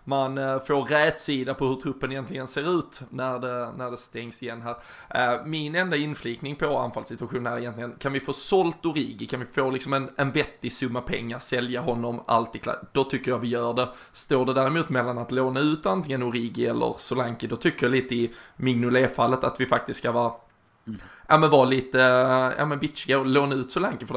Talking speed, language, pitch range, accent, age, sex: 200 wpm, Swedish, 120-135 Hz, native, 20-39, male